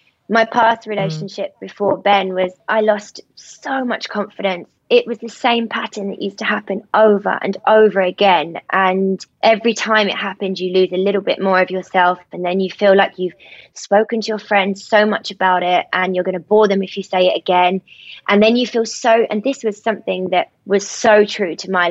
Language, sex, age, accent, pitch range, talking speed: English, female, 20-39, British, 185-220 Hz, 210 wpm